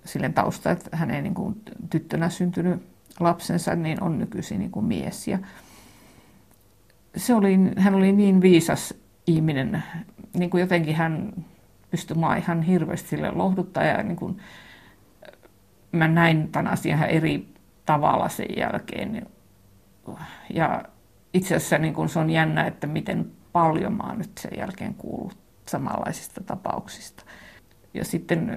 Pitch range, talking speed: 165-200 Hz, 130 wpm